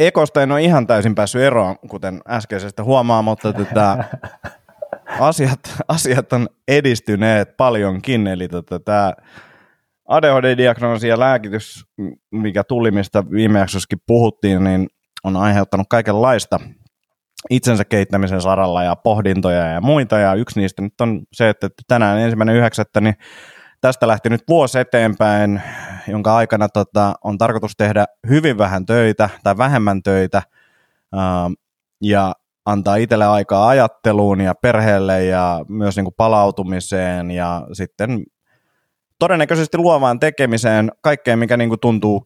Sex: male